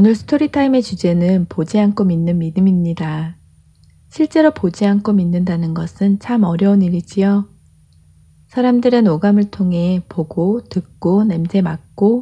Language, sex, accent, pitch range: Korean, female, native, 170-215 Hz